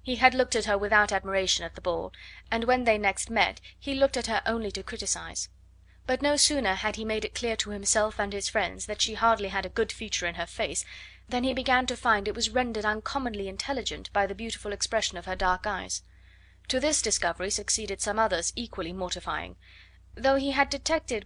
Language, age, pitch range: Chinese, 30-49, 185-240 Hz